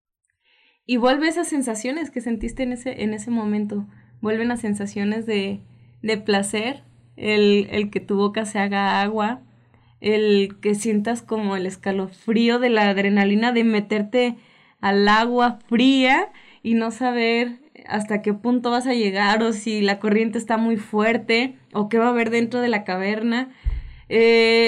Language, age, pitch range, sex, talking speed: Spanish, 20-39, 210-250 Hz, female, 160 wpm